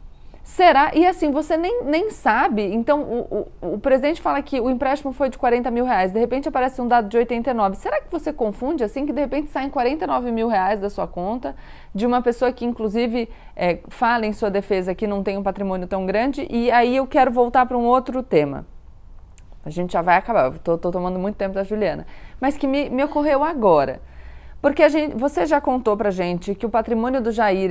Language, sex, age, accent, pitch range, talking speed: Portuguese, female, 20-39, Brazilian, 205-270 Hz, 215 wpm